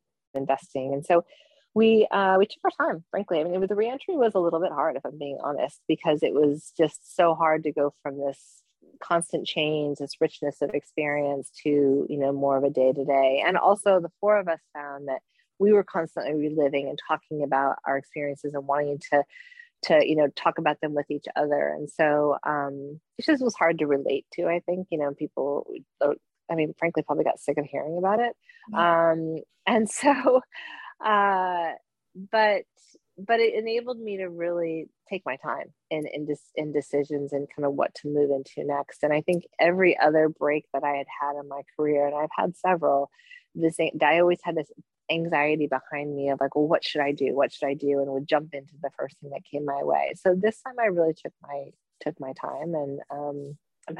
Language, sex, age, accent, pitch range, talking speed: English, female, 30-49, American, 145-180 Hz, 210 wpm